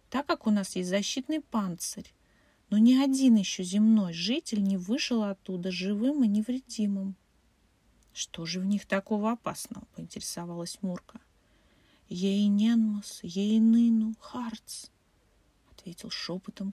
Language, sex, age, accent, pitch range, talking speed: Russian, female, 30-49, native, 190-235 Hz, 120 wpm